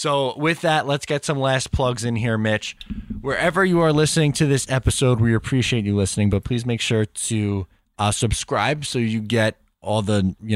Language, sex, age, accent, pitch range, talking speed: English, male, 20-39, American, 95-120 Hz, 200 wpm